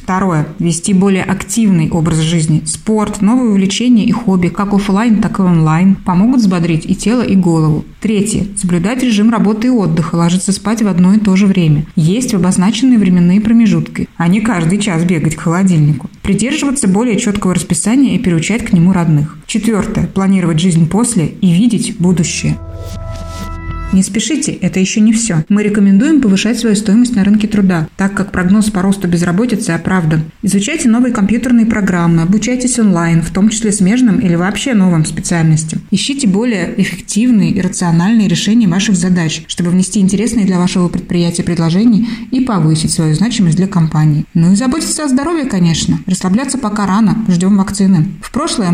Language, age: Russian, 20-39